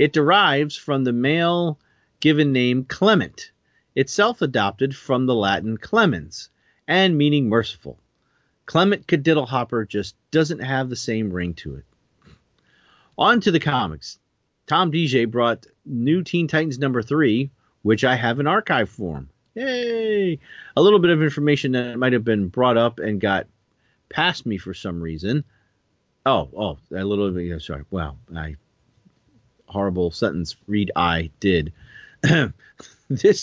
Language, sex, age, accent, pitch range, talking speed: English, male, 40-59, American, 100-145 Hz, 140 wpm